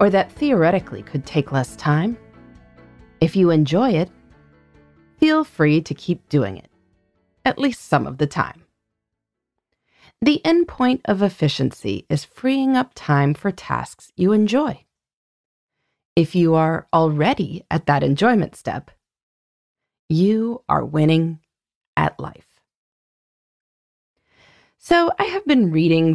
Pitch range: 150-230 Hz